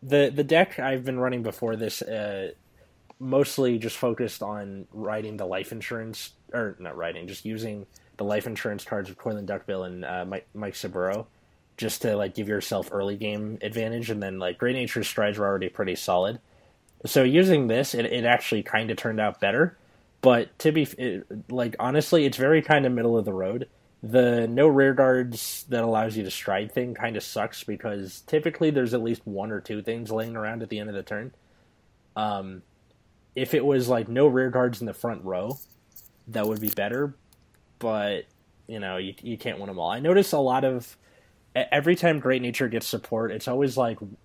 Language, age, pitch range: English, 20-39, 100-125 Hz